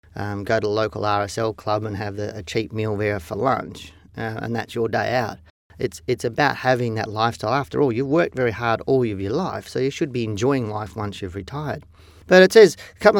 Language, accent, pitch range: English, Australian, 105-135 Hz